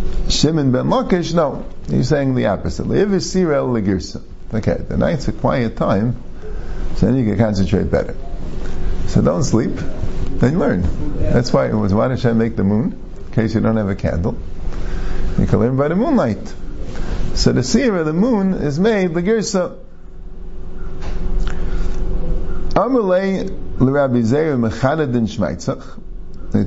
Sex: male